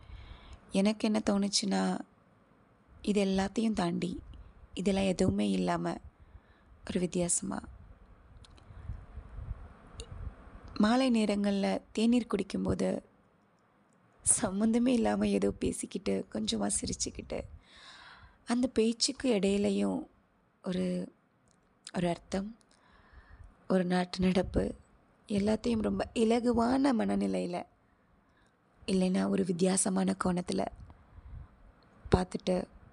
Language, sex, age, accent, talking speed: Tamil, female, 20-39, native, 70 wpm